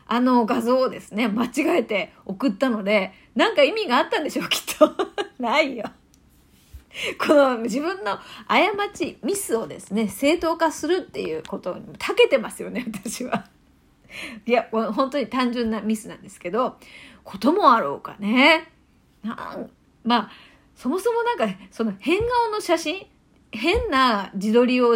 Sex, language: female, Japanese